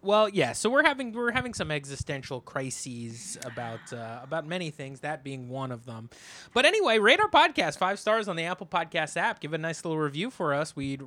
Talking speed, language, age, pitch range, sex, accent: 215 wpm, English, 20-39, 135-185 Hz, male, American